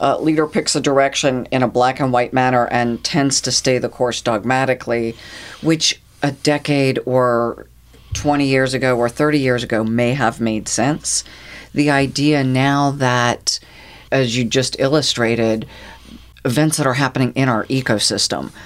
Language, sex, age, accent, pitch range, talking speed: English, female, 40-59, American, 115-130 Hz, 150 wpm